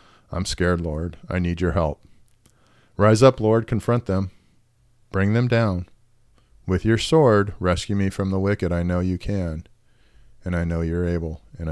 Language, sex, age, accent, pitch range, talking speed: English, male, 40-59, American, 85-110 Hz, 170 wpm